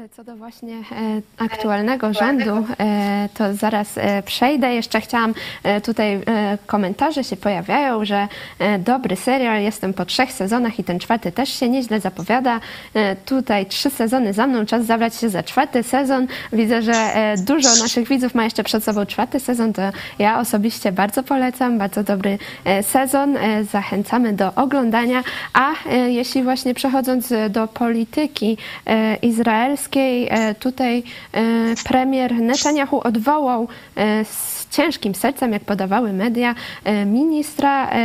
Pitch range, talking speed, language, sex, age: 210-260 Hz, 125 wpm, Polish, female, 20-39